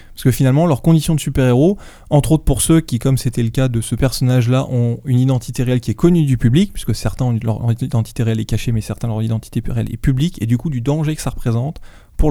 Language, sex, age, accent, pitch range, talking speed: French, male, 20-39, French, 115-140 Hz, 260 wpm